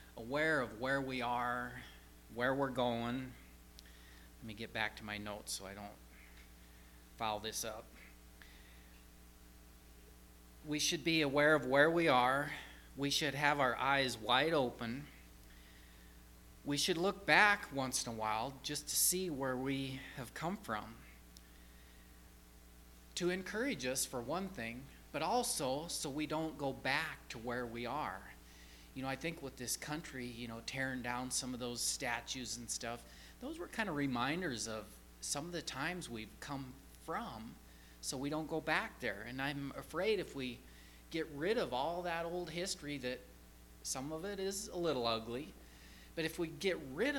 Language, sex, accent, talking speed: English, male, American, 165 wpm